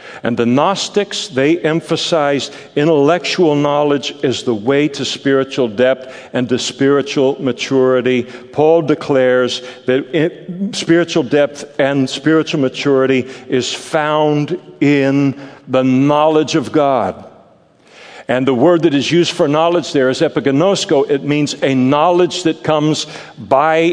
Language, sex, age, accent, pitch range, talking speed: English, male, 60-79, American, 135-170 Hz, 125 wpm